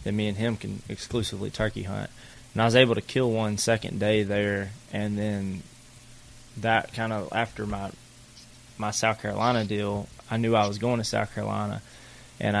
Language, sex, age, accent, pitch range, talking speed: English, male, 20-39, American, 100-120 Hz, 180 wpm